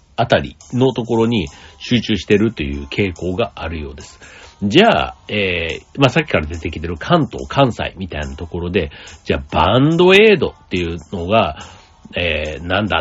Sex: male